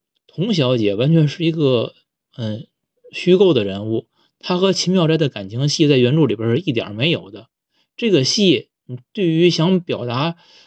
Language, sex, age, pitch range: Chinese, male, 20-39, 125-170 Hz